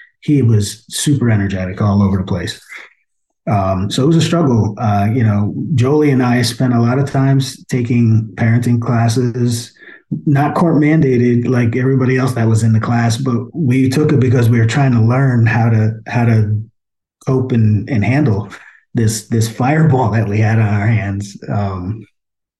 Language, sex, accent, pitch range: English, male, American, 105-125 Hz